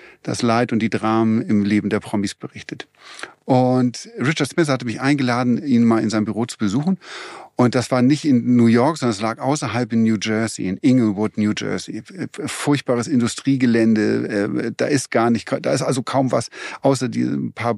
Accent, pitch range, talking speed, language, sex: German, 115-150 Hz, 185 wpm, German, male